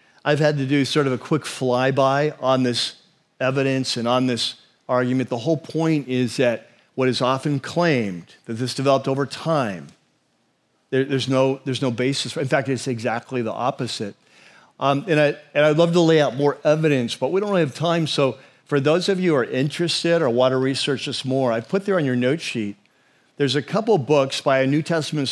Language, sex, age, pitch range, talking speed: English, male, 50-69, 125-155 Hz, 215 wpm